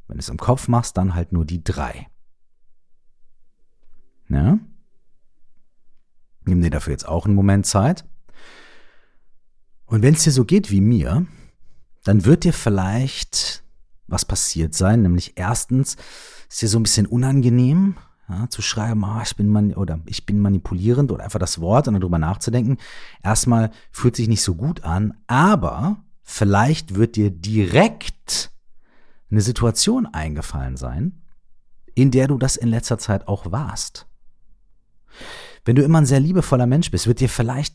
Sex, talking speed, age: male, 155 wpm, 40-59